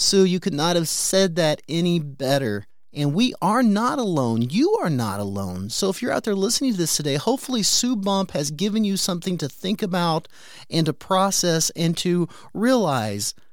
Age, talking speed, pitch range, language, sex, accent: 30-49, 190 wpm, 150-205 Hz, English, male, American